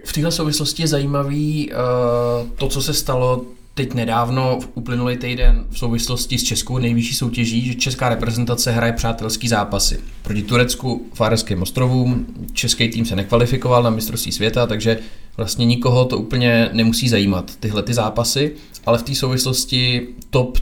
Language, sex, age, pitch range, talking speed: Czech, male, 20-39, 110-125 Hz, 155 wpm